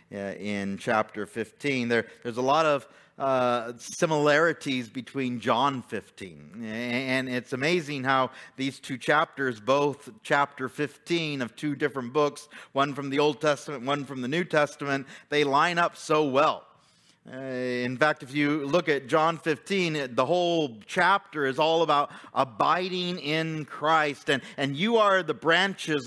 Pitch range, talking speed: 135-160 Hz, 150 wpm